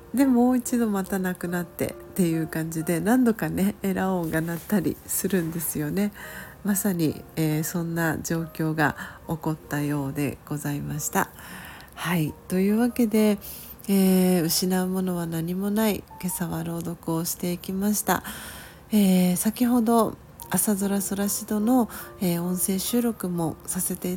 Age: 40-59